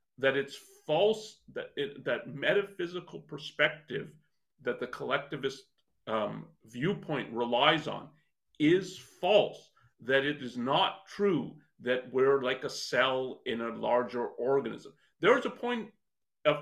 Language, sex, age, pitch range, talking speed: English, male, 40-59, 135-185 Hz, 130 wpm